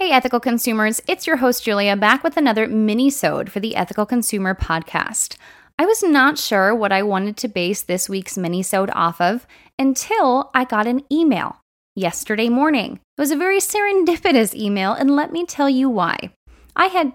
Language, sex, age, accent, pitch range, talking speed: English, female, 20-39, American, 195-270 Hz, 180 wpm